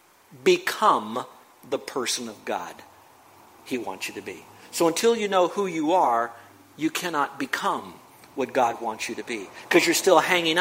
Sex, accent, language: male, American, English